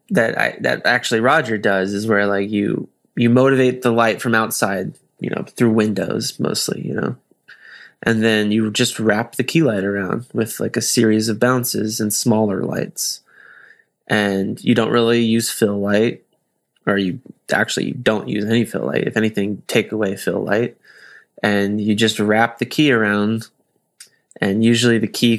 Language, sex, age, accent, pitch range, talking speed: English, male, 20-39, American, 105-120 Hz, 175 wpm